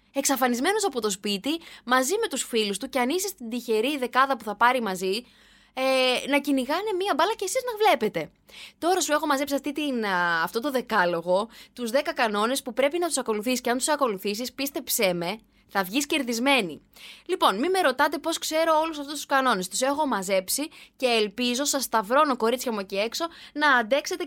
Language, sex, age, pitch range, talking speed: Greek, female, 20-39, 220-310 Hz, 190 wpm